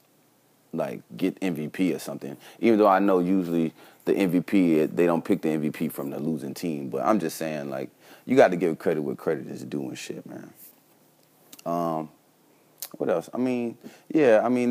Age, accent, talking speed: 30-49, American, 185 wpm